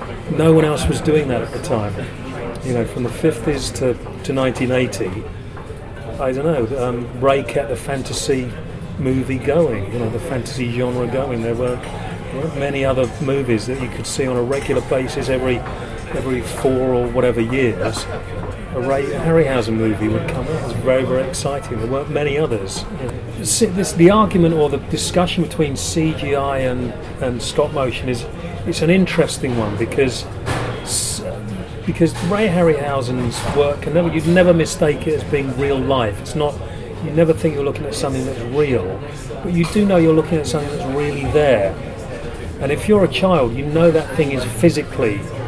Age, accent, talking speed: 40-59, British, 180 wpm